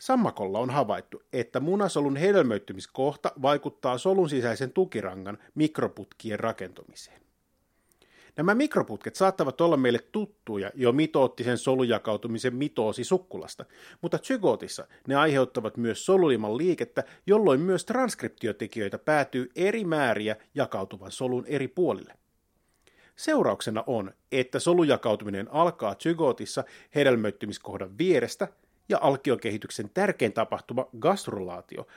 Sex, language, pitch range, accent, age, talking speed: male, Finnish, 115-170 Hz, native, 30-49, 100 wpm